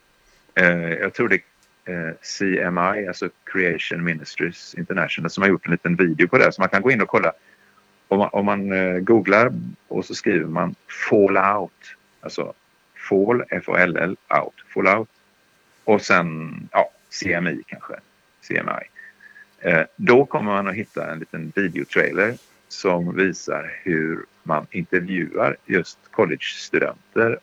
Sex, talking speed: male, 125 wpm